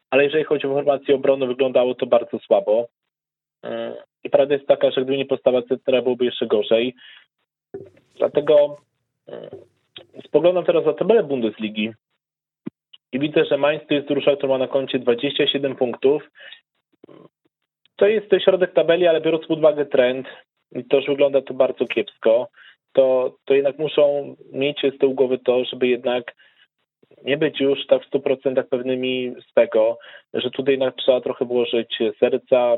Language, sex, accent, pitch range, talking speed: Polish, male, native, 130-155 Hz, 155 wpm